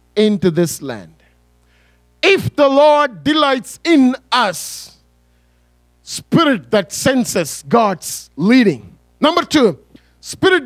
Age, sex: 50-69, male